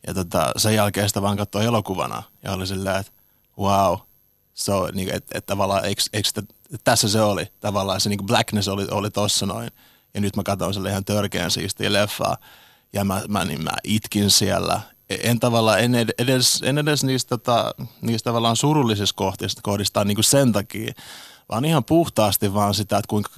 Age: 30-49